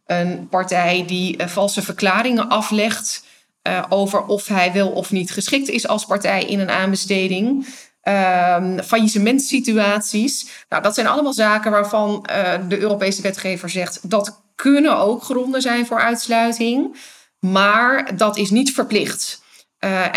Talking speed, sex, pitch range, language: 145 wpm, female, 185-220 Hz, English